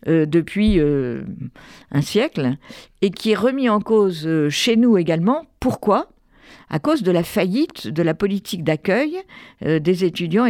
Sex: female